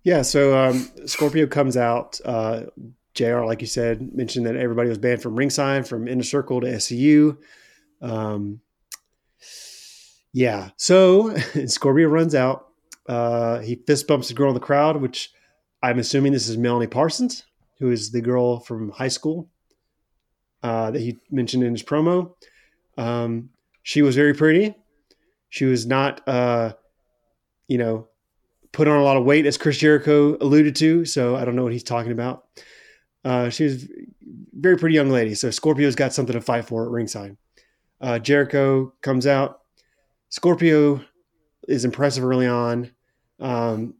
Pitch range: 120-145 Hz